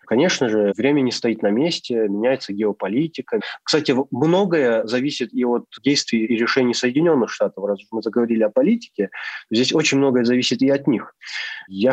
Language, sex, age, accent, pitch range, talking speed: Russian, male, 20-39, native, 115-140 Hz, 160 wpm